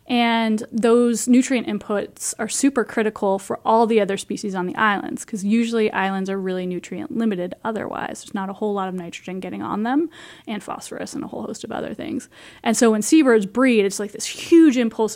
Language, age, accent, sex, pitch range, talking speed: English, 20-39, American, female, 195-225 Hz, 205 wpm